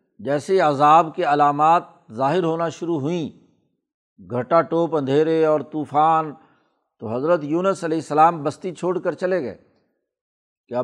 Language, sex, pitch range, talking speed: Urdu, male, 145-180 Hz, 135 wpm